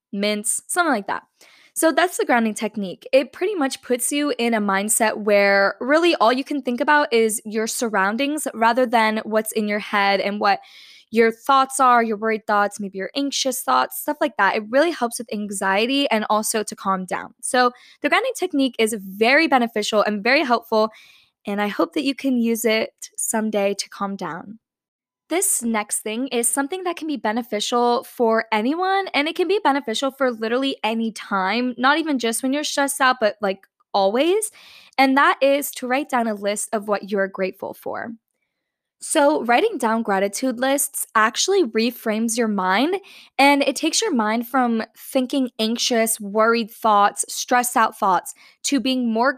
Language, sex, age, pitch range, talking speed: English, female, 10-29, 215-275 Hz, 180 wpm